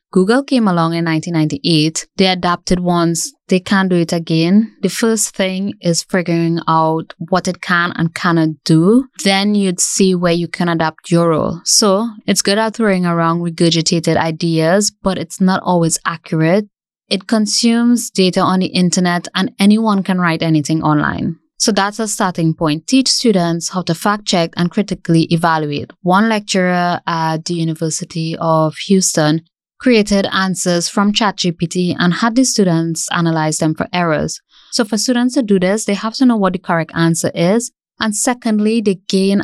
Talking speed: 170 wpm